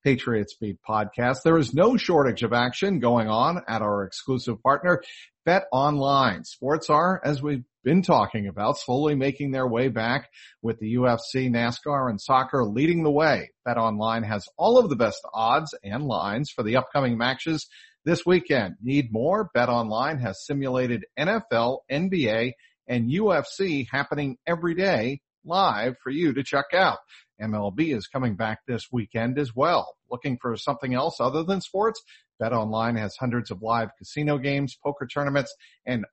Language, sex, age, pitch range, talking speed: English, male, 50-69, 115-155 Hz, 160 wpm